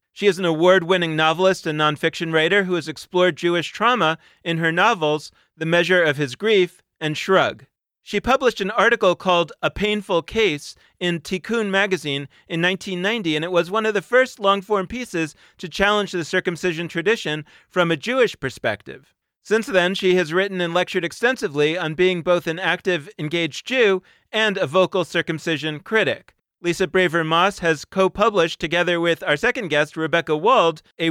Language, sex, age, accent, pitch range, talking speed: English, male, 30-49, American, 160-190 Hz, 165 wpm